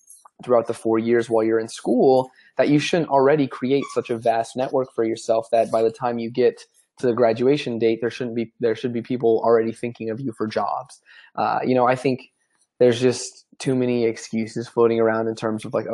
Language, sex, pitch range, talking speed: English, male, 115-130 Hz, 220 wpm